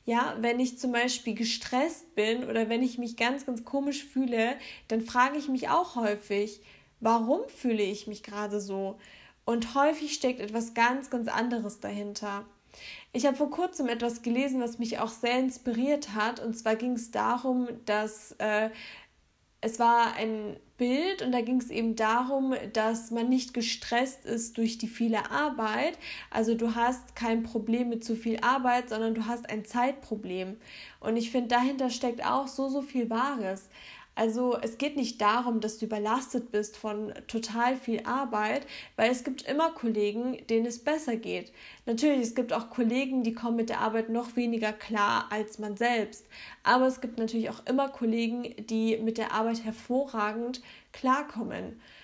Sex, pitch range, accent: female, 220-255 Hz, German